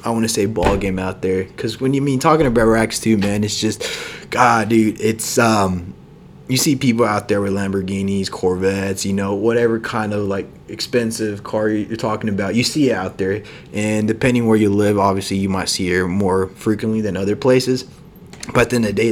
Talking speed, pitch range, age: 205 wpm, 100-115 Hz, 20-39